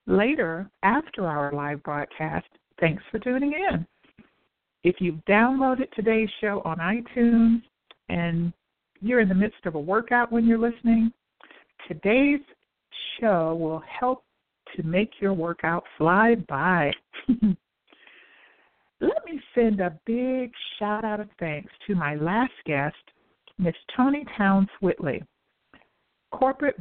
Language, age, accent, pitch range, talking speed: English, 60-79, American, 175-240 Hz, 120 wpm